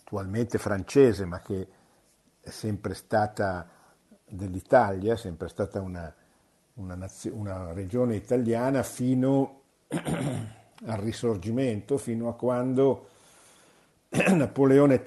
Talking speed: 90 wpm